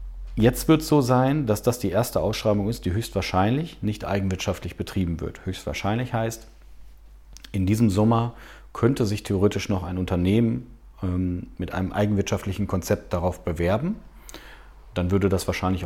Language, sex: German, male